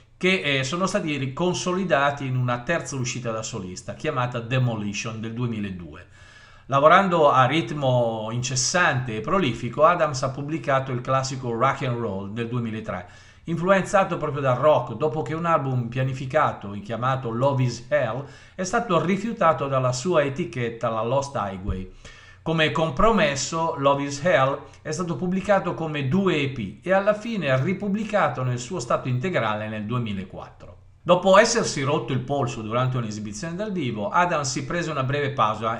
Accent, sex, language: native, male, Italian